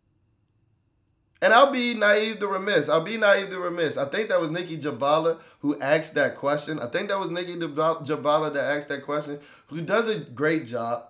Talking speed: 195 wpm